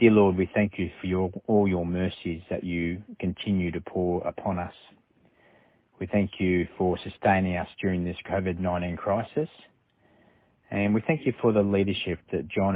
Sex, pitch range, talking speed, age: male, 90-105 Hz, 165 wpm, 30-49